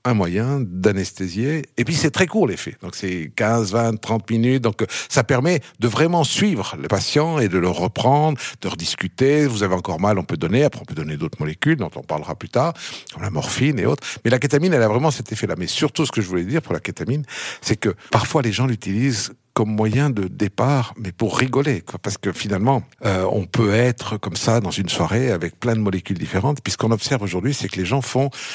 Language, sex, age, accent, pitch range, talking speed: French, male, 60-79, French, 100-140 Hz, 235 wpm